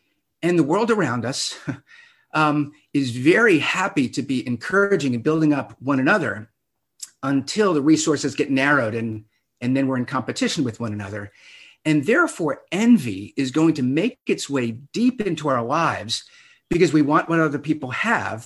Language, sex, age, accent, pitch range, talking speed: English, male, 50-69, American, 130-170 Hz, 165 wpm